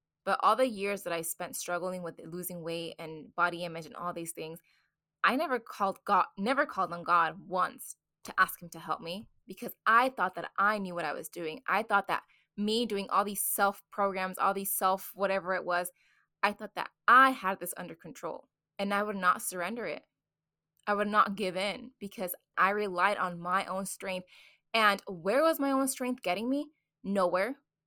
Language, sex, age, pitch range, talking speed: English, female, 20-39, 180-220 Hz, 200 wpm